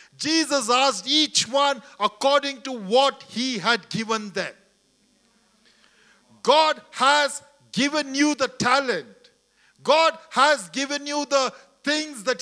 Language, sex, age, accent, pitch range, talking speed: English, male, 50-69, Indian, 240-285 Hz, 115 wpm